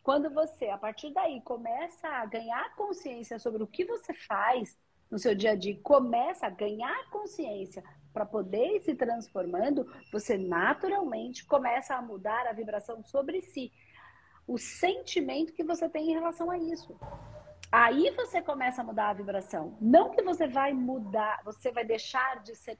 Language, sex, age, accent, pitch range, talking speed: Portuguese, female, 40-59, Brazilian, 220-315 Hz, 165 wpm